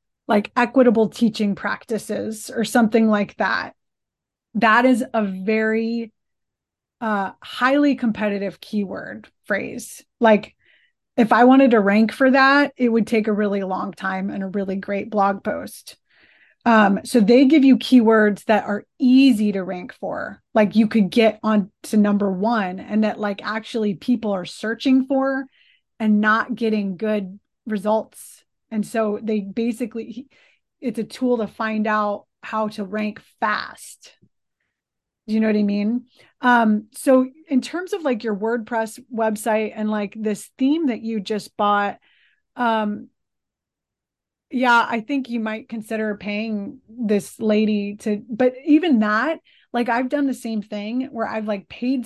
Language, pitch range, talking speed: English, 210-245 Hz, 150 wpm